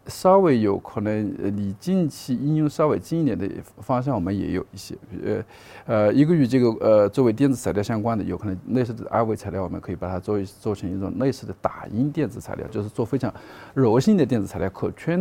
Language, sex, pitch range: Chinese, male, 100-120 Hz